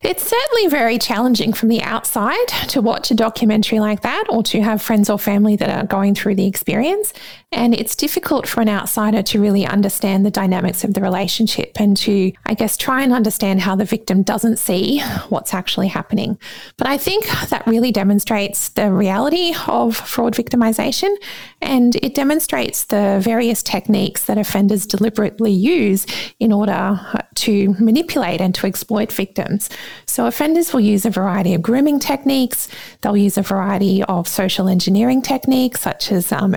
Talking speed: 170 wpm